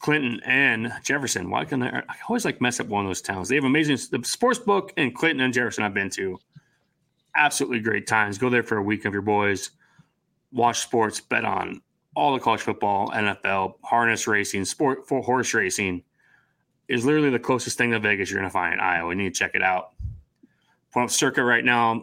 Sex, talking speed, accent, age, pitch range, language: male, 210 wpm, American, 20-39, 105-135 Hz, English